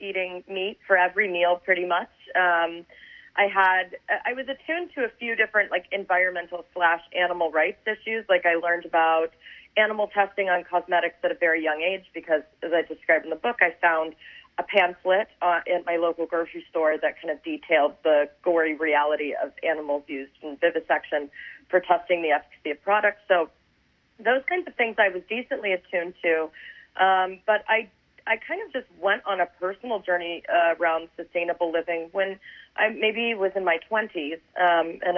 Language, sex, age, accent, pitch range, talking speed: English, female, 30-49, American, 170-210 Hz, 180 wpm